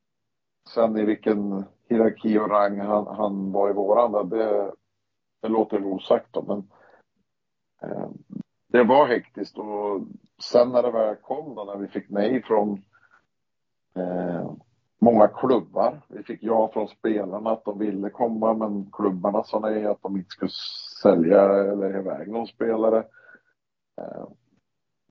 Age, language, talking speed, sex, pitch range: 50-69, Swedish, 140 wpm, male, 100-110 Hz